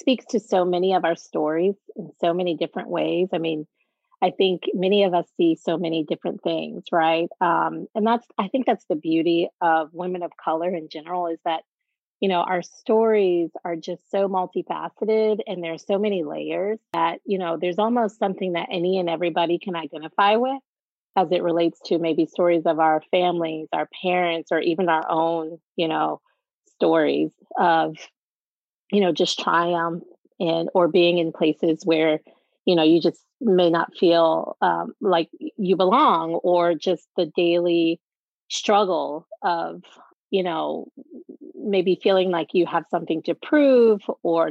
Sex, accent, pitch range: female, American, 165-200 Hz